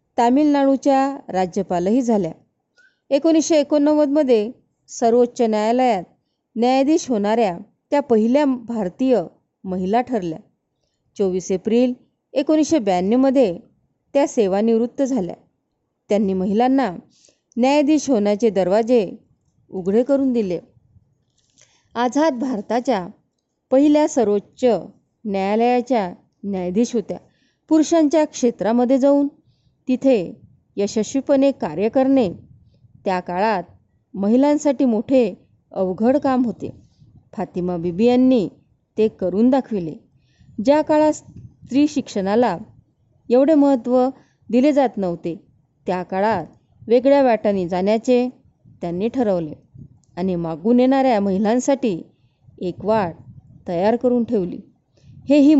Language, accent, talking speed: Marathi, native, 90 wpm